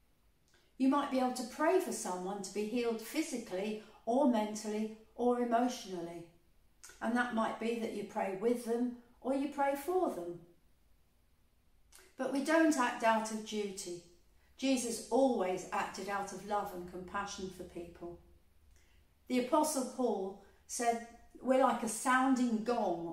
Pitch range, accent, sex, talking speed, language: 175-245 Hz, British, female, 145 wpm, English